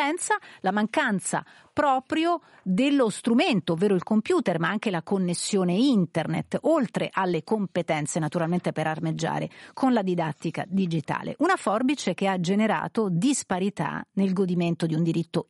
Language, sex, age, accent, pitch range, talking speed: Italian, female, 40-59, native, 170-235 Hz, 130 wpm